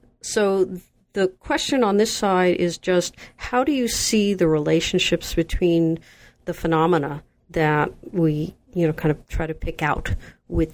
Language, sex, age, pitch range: English, female, 40-59, 155-180 Hz